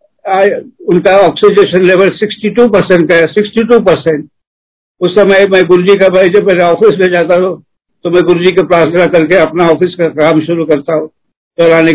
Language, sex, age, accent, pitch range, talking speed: Hindi, male, 60-79, native, 160-185 Hz, 175 wpm